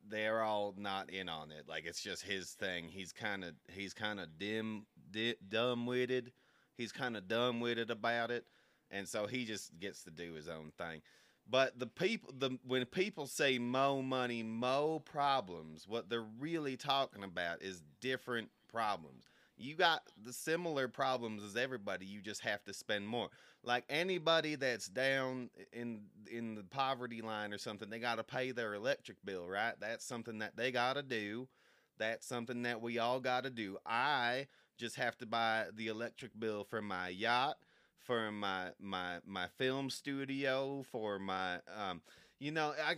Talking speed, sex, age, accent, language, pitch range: 175 wpm, male, 30-49, American, English, 105-130 Hz